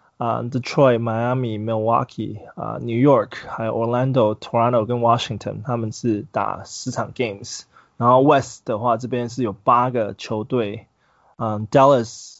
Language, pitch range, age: Chinese, 115-145 Hz, 20-39